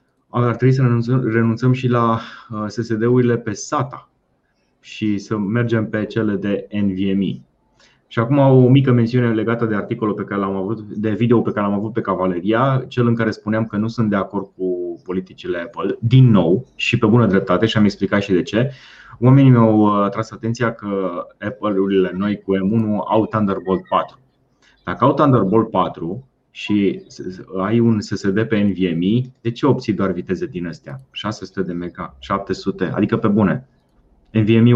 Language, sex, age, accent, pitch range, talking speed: Romanian, male, 30-49, native, 95-115 Hz, 170 wpm